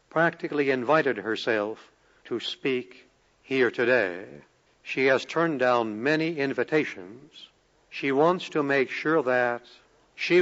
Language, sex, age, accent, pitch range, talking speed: English, male, 60-79, American, 130-160 Hz, 115 wpm